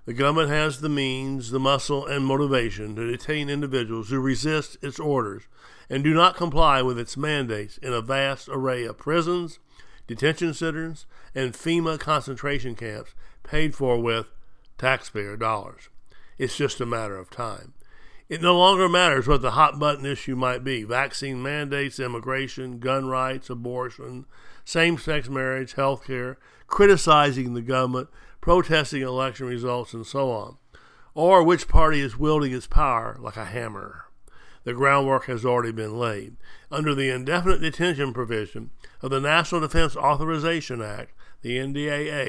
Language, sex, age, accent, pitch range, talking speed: English, male, 60-79, American, 125-155 Hz, 150 wpm